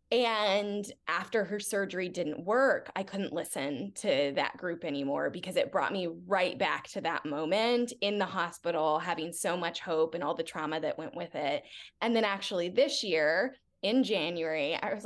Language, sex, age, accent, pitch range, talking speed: English, female, 10-29, American, 180-245 Hz, 185 wpm